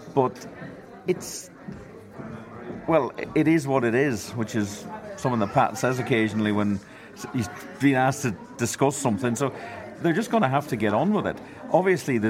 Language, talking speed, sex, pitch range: English, 165 wpm, male, 105-140 Hz